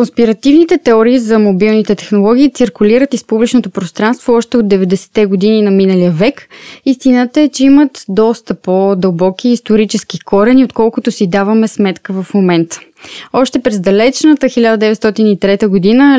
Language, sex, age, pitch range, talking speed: Bulgarian, female, 20-39, 200-245 Hz, 130 wpm